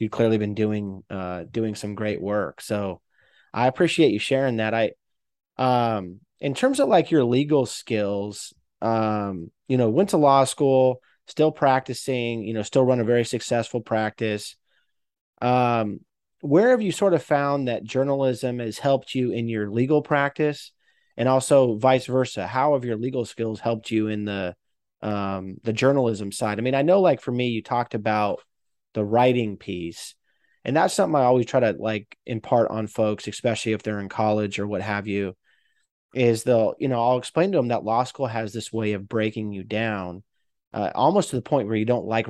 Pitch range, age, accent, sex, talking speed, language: 105-130 Hz, 30-49, American, male, 190 wpm, English